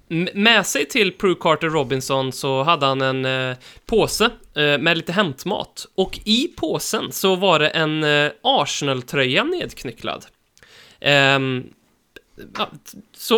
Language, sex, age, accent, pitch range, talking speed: Swedish, male, 20-39, native, 135-190 Hz, 110 wpm